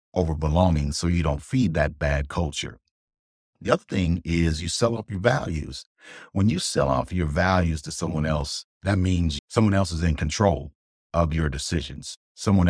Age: 50-69